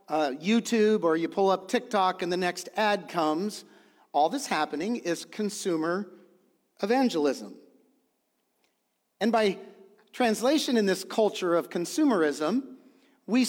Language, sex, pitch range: English, male, 170-225 Hz